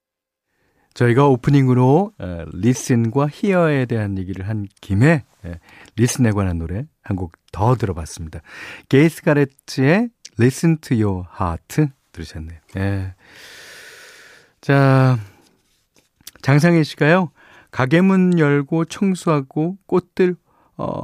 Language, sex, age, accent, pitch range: Korean, male, 40-59, native, 100-160 Hz